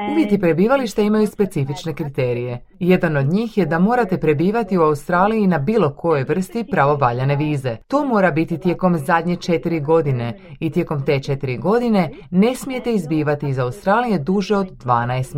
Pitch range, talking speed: 140-195 Hz, 155 wpm